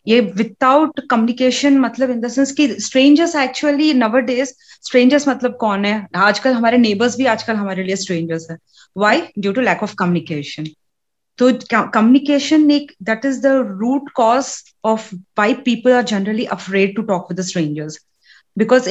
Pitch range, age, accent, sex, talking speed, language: 215-265 Hz, 30-49, Indian, female, 145 wpm, English